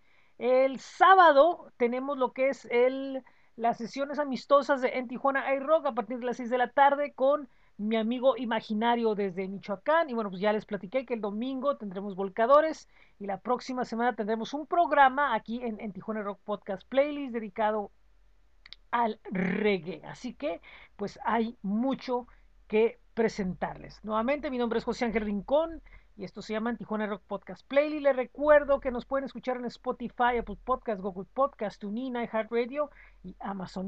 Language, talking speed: Spanish, 170 wpm